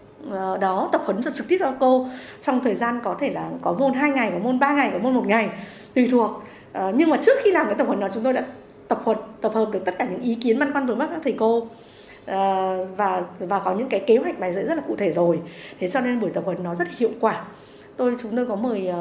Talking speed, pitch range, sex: 265 wpm, 190-255 Hz, female